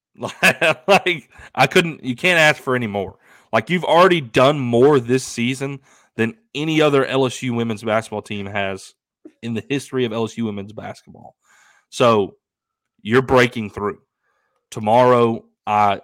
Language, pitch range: English, 105-125 Hz